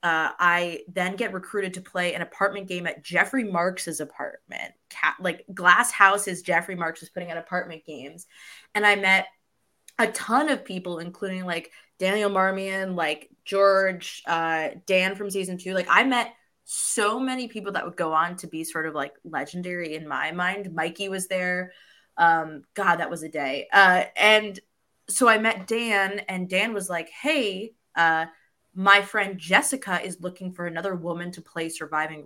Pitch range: 170-210 Hz